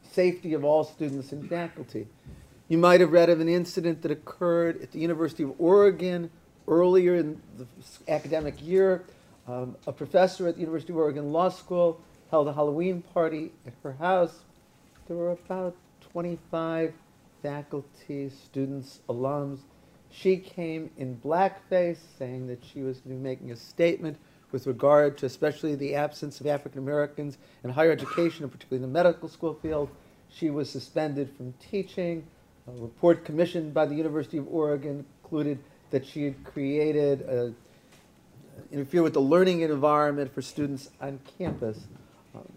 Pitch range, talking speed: 140-170 Hz, 150 wpm